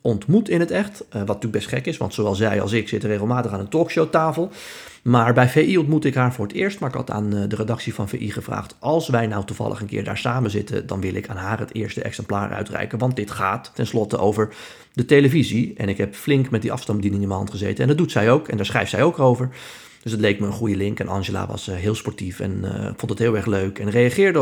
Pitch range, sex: 105-135 Hz, male